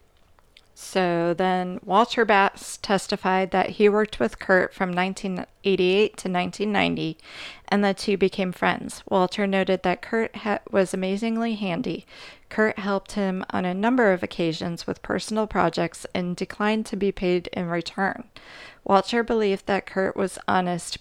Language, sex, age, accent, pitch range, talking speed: English, female, 40-59, American, 180-205 Hz, 145 wpm